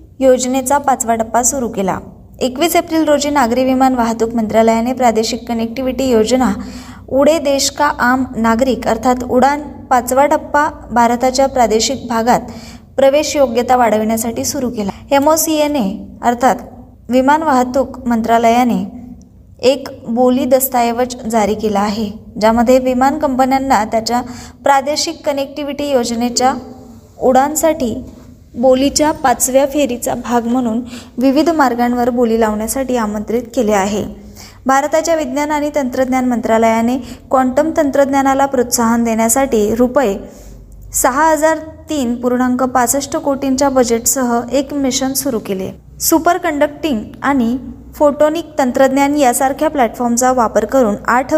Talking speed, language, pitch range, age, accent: 105 wpm, Marathi, 235-280 Hz, 20-39, native